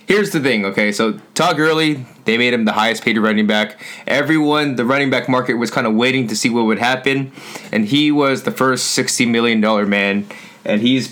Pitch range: 110-135 Hz